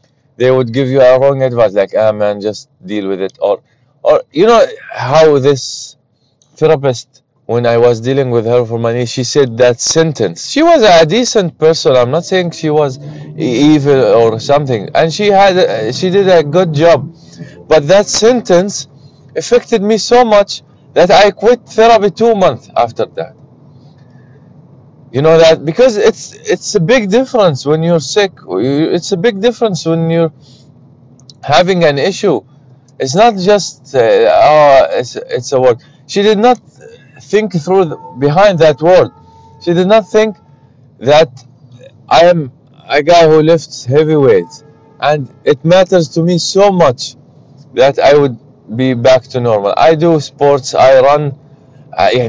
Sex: male